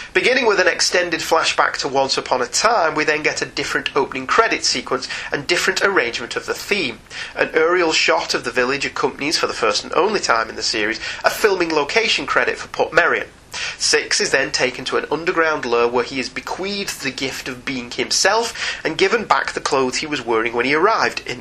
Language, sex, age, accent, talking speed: English, male, 30-49, British, 215 wpm